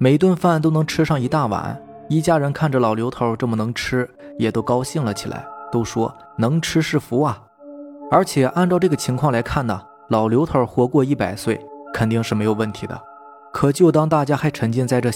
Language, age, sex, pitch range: Chinese, 20-39, male, 110-140 Hz